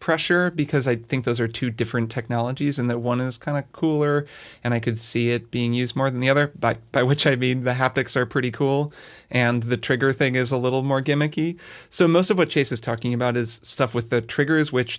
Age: 30-49